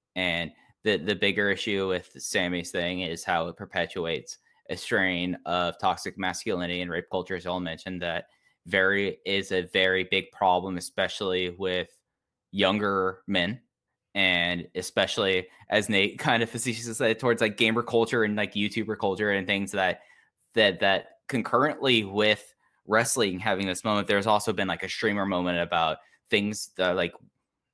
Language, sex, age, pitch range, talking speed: English, male, 10-29, 85-100 Hz, 155 wpm